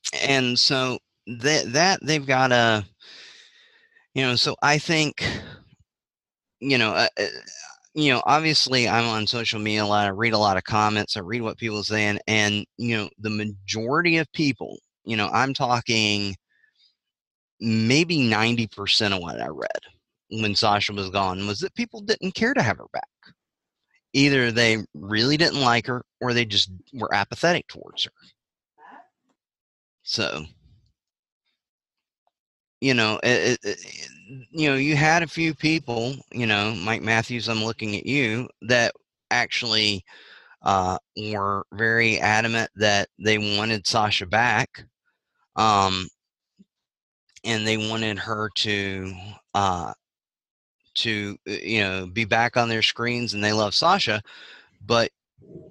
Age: 30-49